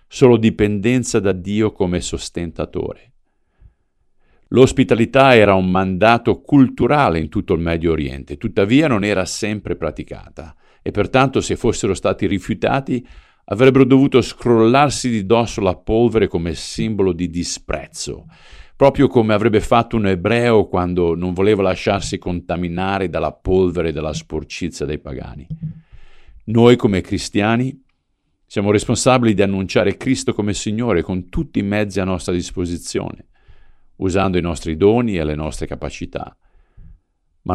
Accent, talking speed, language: native, 130 wpm, Italian